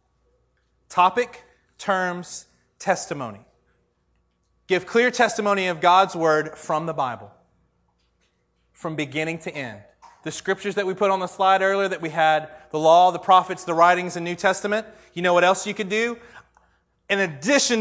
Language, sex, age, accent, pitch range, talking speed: English, male, 30-49, American, 165-215 Hz, 155 wpm